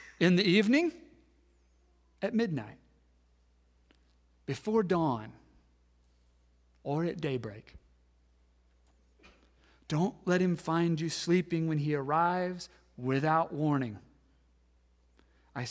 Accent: American